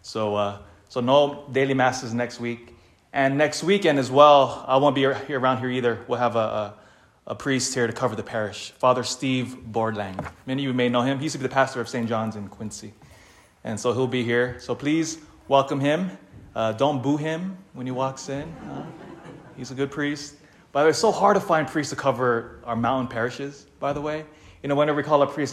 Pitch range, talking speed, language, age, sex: 115-145 Hz, 225 wpm, English, 20-39, male